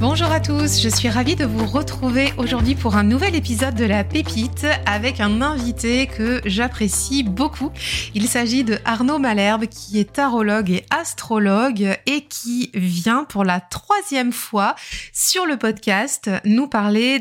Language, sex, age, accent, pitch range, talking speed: French, female, 30-49, French, 195-250 Hz, 155 wpm